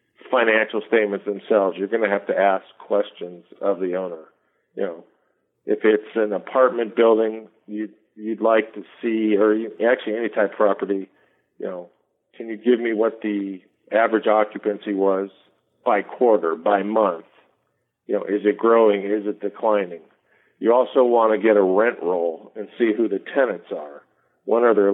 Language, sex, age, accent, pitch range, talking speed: English, male, 50-69, American, 105-120 Hz, 175 wpm